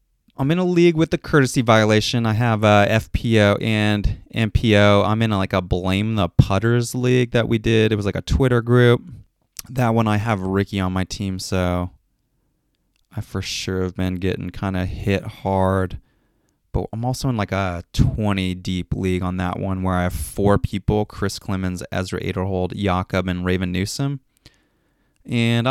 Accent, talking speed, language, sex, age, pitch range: American, 180 wpm, English, male, 20-39, 95-115 Hz